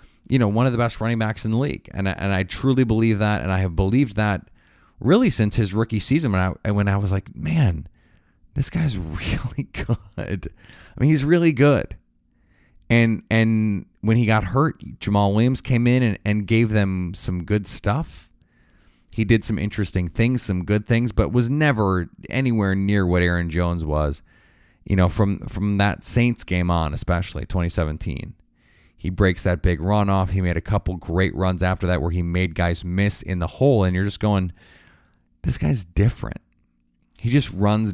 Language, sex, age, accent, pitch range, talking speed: English, male, 30-49, American, 90-115 Hz, 190 wpm